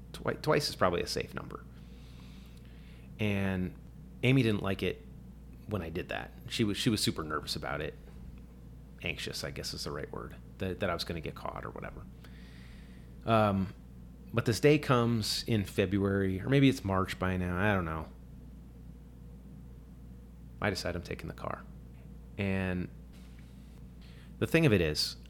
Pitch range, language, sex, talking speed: 65-100 Hz, English, male, 160 wpm